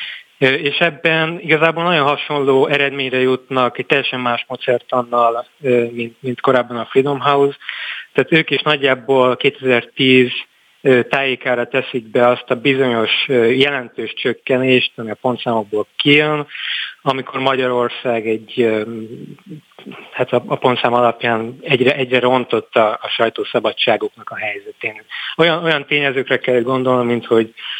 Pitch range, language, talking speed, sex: 120-145 Hz, Hungarian, 120 wpm, male